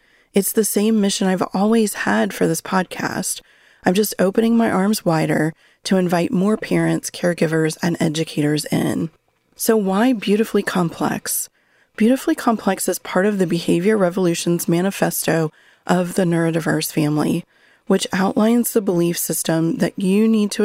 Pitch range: 165-210 Hz